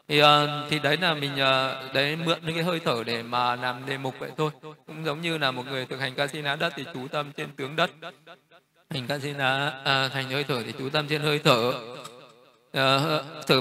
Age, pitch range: 20-39, 130-165 Hz